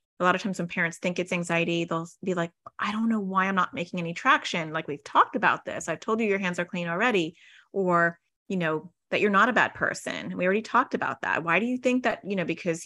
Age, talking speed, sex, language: 30-49, 260 wpm, female, English